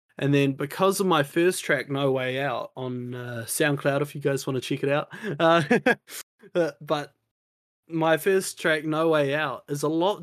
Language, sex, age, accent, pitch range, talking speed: English, male, 20-39, Australian, 135-160 Hz, 190 wpm